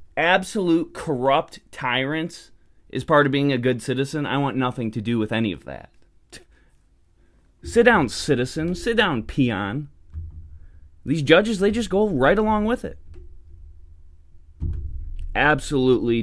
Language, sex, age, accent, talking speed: English, male, 20-39, American, 130 wpm